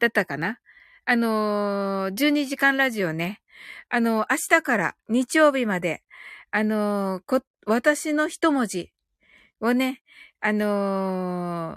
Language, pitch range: Japanese, 205-285 Hz